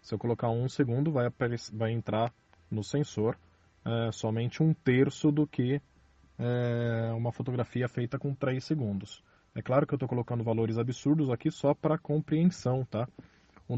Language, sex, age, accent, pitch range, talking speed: Portuguese, male, 20-39, Brazilian, 110-135 Hz, 165 wpm